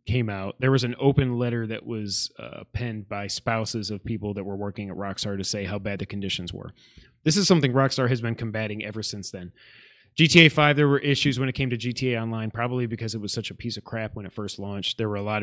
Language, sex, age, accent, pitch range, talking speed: English, male, 30-49, American, 105-135 Hz, 255 wpm